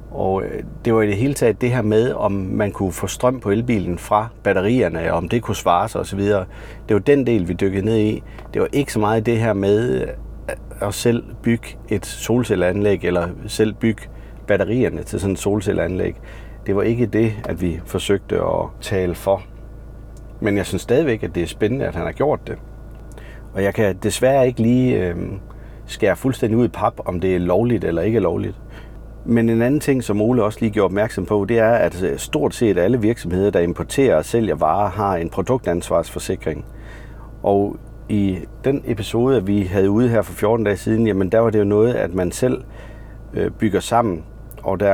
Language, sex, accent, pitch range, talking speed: Danish, male, native, 95-115 Hz, 195 wpm